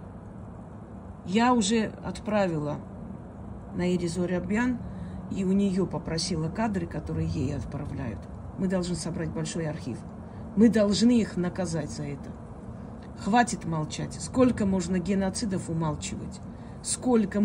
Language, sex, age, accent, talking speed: Russian, female, 40-59, native, 105 wpm